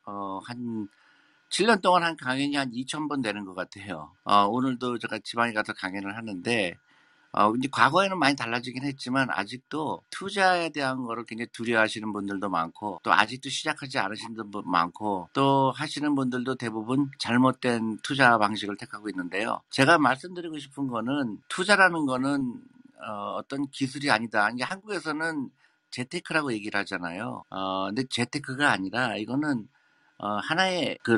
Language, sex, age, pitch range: Korean, male, 50-69, 110-145 Hz